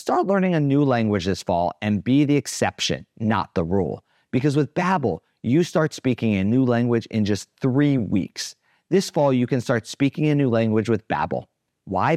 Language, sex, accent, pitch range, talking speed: English, male, American, 110-145 Hz, 190 wpm